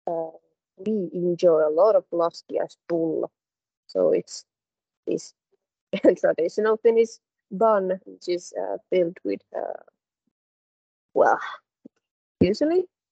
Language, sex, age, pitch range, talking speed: Finnish, female, 20-39, 180-290 Hz, 100 wpm